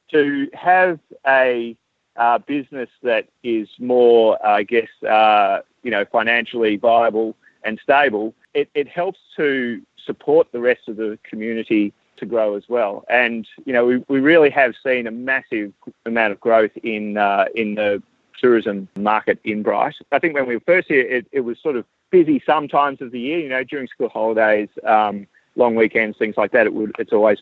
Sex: male